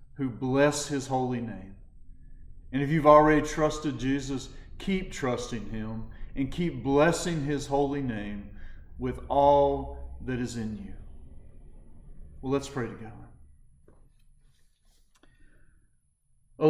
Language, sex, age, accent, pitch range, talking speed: English, male, 40-59, American, 115-155 Hz, 110 wpm